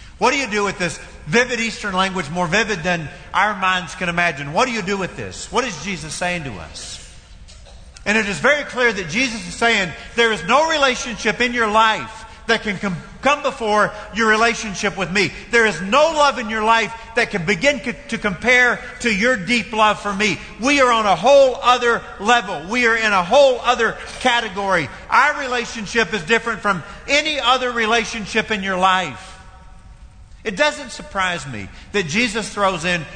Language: English